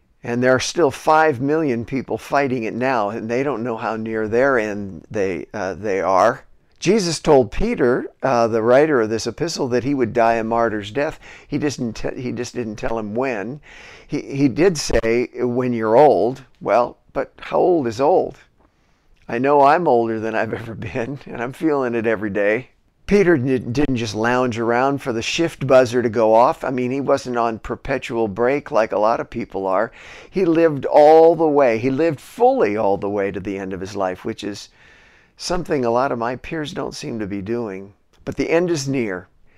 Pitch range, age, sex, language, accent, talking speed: 115-150 Hz, 50-69, male, English, American, 200 wpm